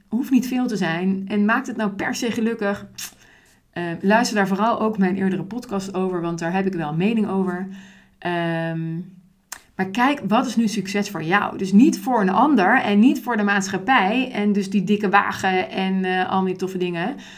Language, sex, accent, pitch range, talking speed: Dutch, female, Dutch, 180-225 Hz, 200 wpm